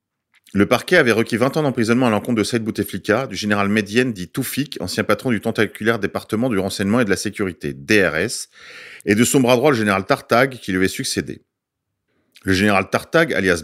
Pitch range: 105-130 Hz